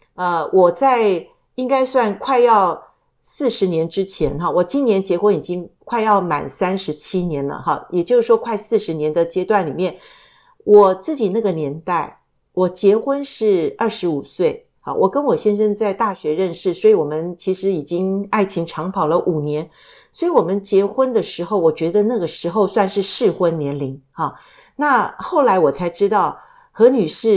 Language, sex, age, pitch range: Chinese, female, 50-69, 175-245 Hz